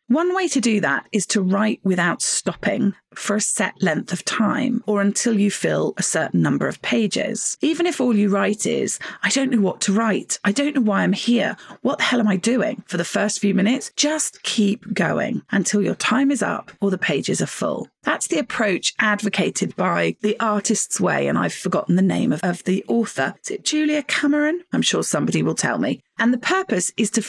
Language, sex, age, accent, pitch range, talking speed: English, female, 40-59, British, 200-265 Hz, 220 wpm